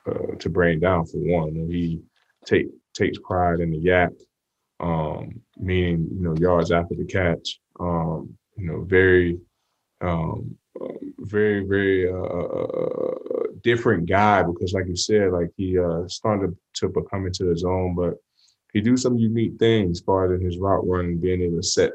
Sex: male